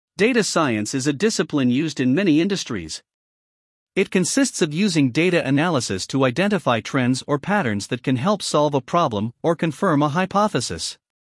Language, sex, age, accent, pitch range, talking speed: English, male, 50-69, American, 130-185 Hz, 160 wpm